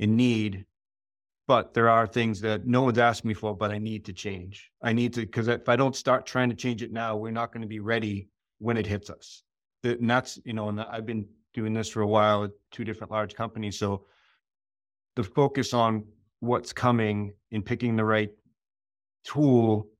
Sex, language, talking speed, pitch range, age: male, English, 205 wpm, 105-120 Hz, 30-49